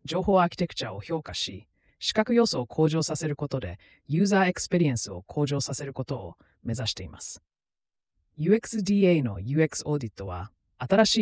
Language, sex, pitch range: Japanese, female, 115-165 Hz